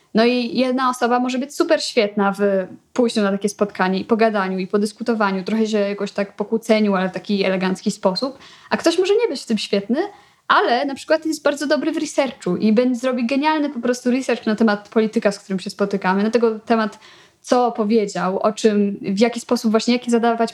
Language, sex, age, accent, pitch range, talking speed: Polish, female, 20-39, native, 200-240 Hz, 205 wpm